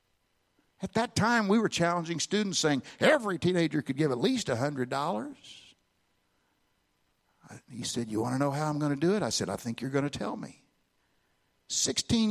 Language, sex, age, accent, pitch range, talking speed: English, male, 60-79, American, 145-205 Hz, 180 wpm